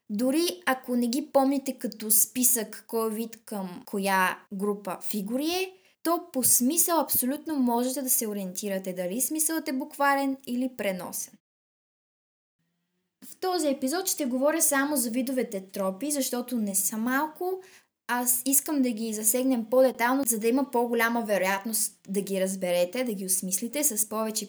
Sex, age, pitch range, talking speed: female, 20-39, 210-275 Hz, 145 wpm